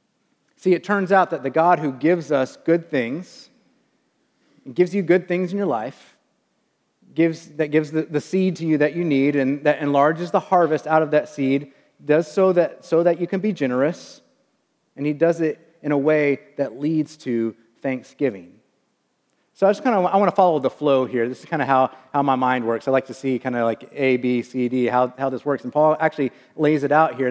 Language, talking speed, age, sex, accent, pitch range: English, 220 wpm, 30-49, male, American, 135-175 Hz